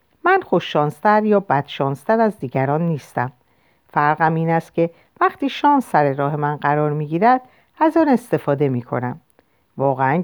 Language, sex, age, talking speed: Persian, female, 50-69, 150 wpm